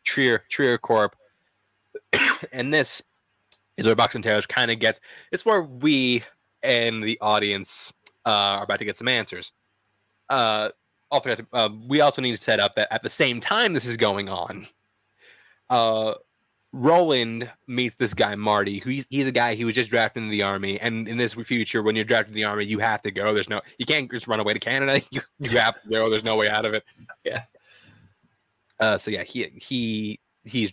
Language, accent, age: English, American, 20-39